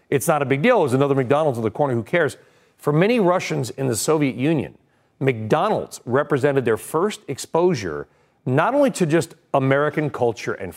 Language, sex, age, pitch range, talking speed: English, male, 40-59, 130-180 Hz, 180 wpm